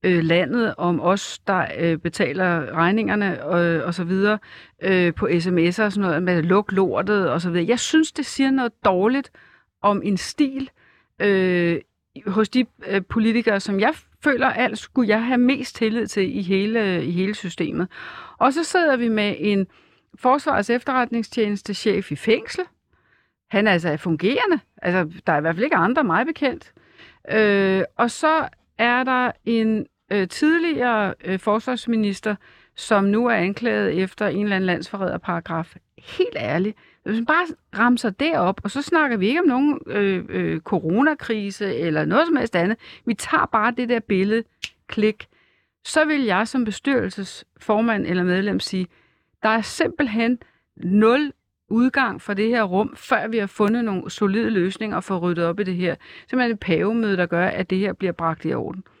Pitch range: 185-245 Hz